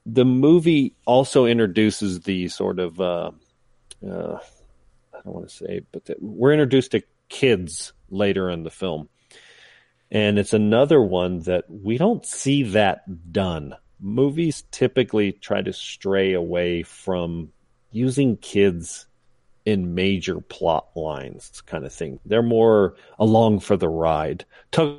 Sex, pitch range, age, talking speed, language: male, 90-110 Hz, 40-59, 135 wpm, English